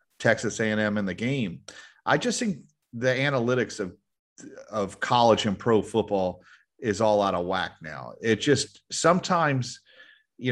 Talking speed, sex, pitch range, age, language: 150 wpm, male, 105-135 Hz, 40-59, English